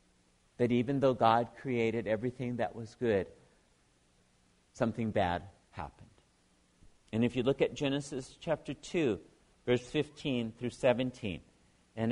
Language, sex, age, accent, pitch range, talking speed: English, male, 50-69, American, 105-160 Hz, 125 wpm